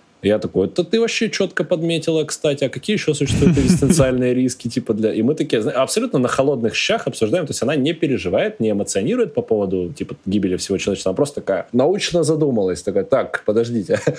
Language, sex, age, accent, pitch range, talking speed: Russian, male, 20-39, native, 115-155 Hz, 190 wpm